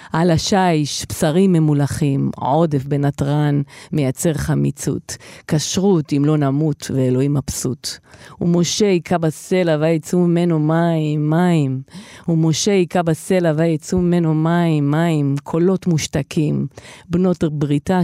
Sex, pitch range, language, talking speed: female, 140-170 Hz, Hebrew, 105 wpm